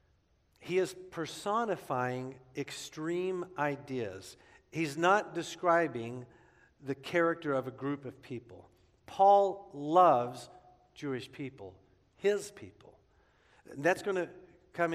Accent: American